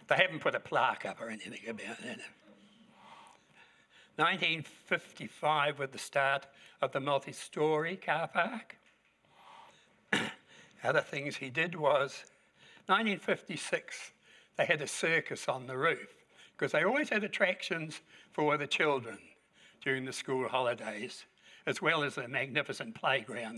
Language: English